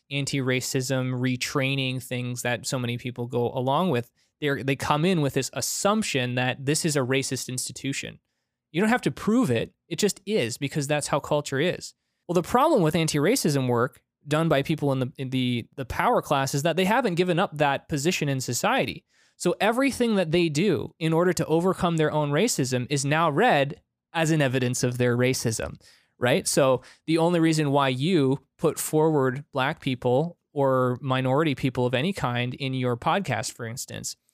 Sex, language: male, English